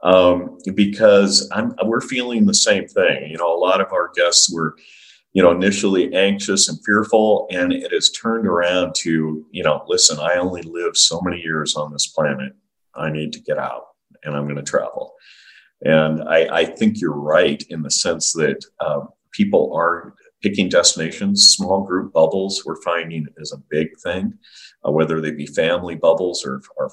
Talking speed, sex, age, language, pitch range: 185 wpm, male, 50-69, English, 80-125 Hz